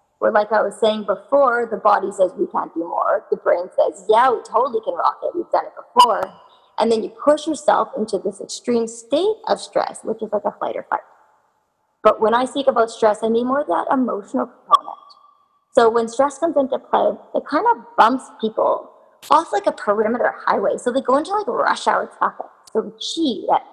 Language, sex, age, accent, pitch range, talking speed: English, female, 30-49, American, 220-285 Hz, 210 wpm